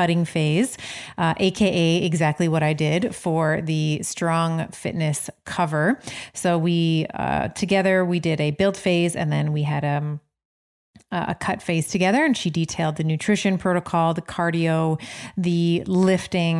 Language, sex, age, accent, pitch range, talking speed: English, female, 30-49, American, 160-190 Hz, 155 wpm